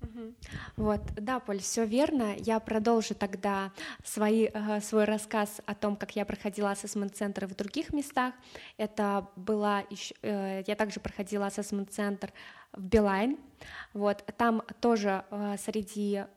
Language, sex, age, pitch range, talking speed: Russian, female, 20-39, 205-225 Hz, 110 wpm